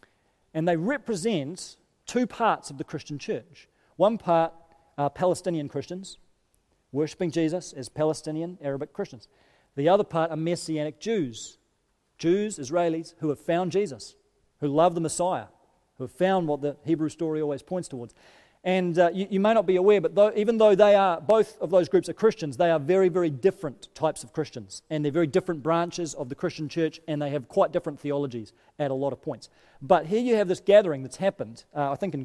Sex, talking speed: male, 195 wpm